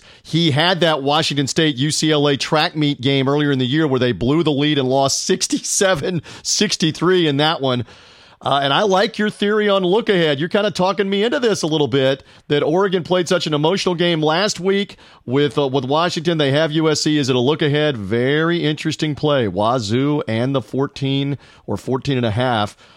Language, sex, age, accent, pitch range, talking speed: English, male, 40-59, American, 135-180 Hz, 195 wpm